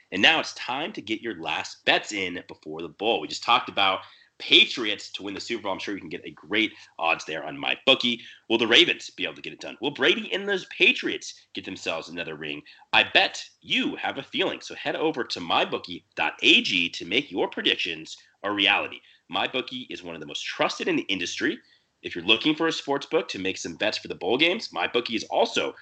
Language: English